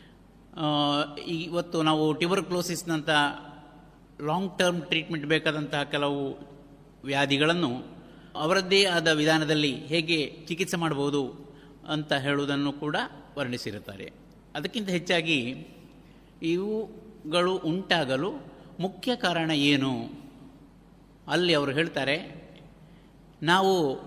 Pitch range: 150-180 Hz